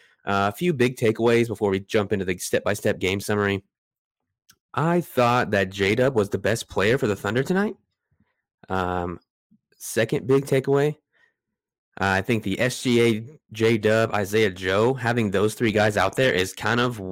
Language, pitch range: English, 95-115 Hz